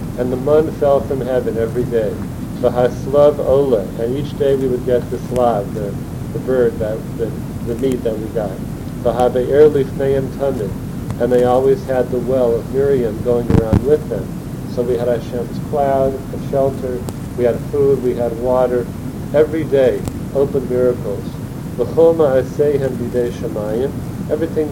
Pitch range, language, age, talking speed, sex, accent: 120-140 Hz, English, 50-69, 135 wpm, male, American